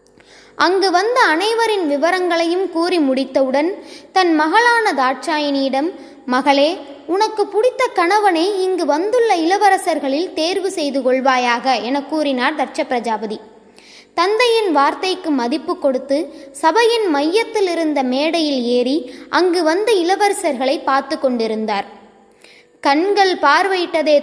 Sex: female